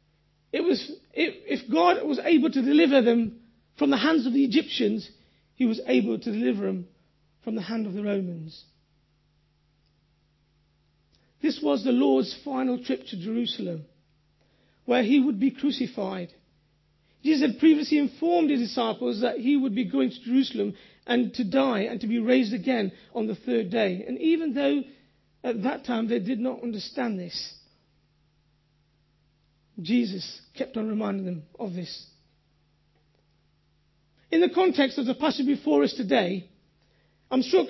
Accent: British